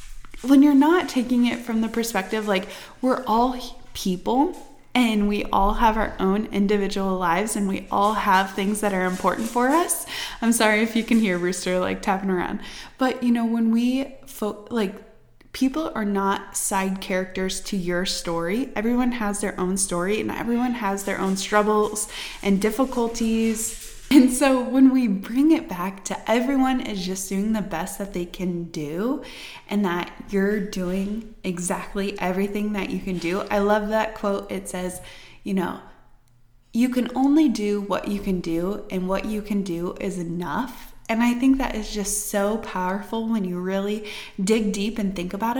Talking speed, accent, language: 175 wpm, American, English